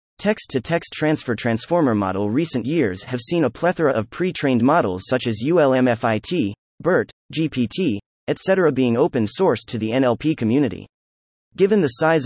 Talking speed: 135 wpm